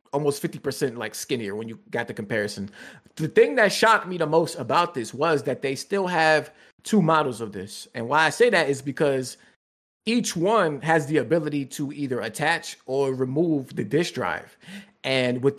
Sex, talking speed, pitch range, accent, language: male, 190 wpm, 125-160 Hz, American, English